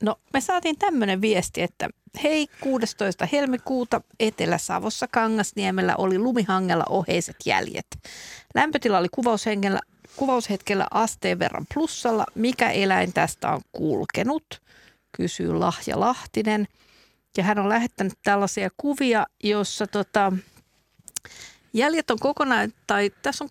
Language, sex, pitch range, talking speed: Finnish, female, 190-230 Hz, 100 wpm